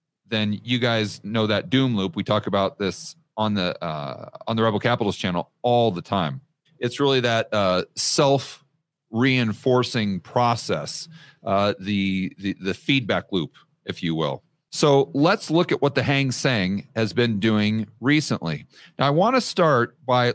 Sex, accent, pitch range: male, American, 105-140 Hz